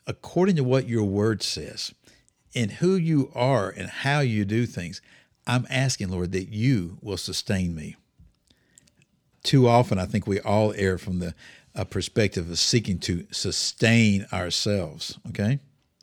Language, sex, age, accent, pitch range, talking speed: English, male, 60-79, American, 95-125 Hz, 145 wpm